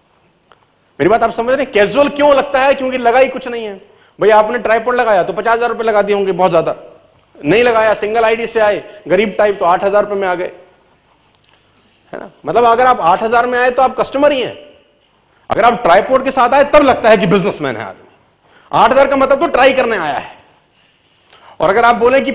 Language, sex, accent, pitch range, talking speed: Hindi, male, native, 185-265 Hz, 80 wpm